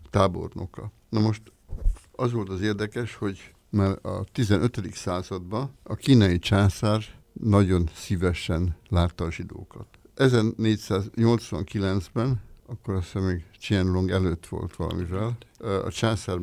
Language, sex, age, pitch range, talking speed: Hungarian, male, 60-79, 90-105 Hz, 110 wpm